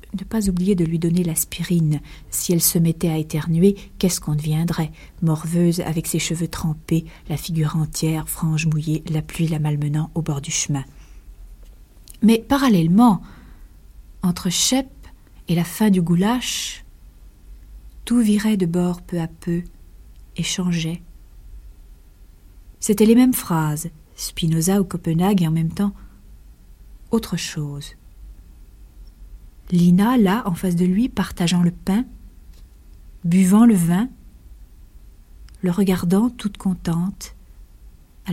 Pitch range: 145-195 Hz